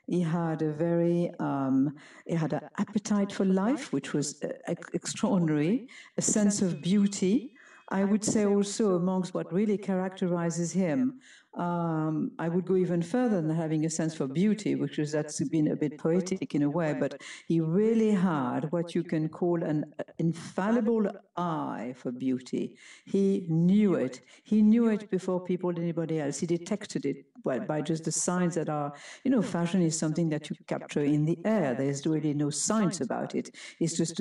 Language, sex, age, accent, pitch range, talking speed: English, female, 60-79, French, 155-210 Hz, 180 wpm